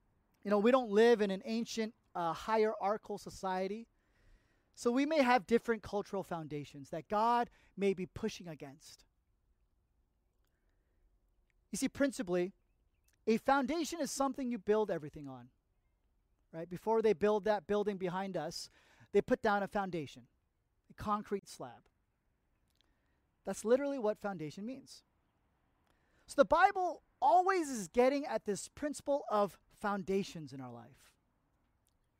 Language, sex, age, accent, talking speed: English, male, 30-49, American, 130 wpm